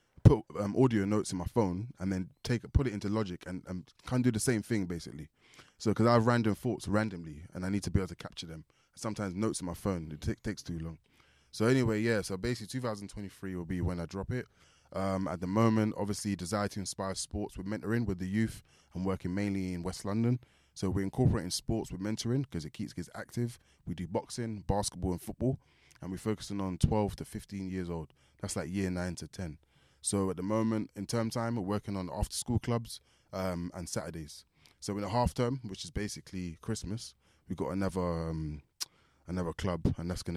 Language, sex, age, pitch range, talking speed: English, male, 20-39, 90-110 Hz, 215 wpm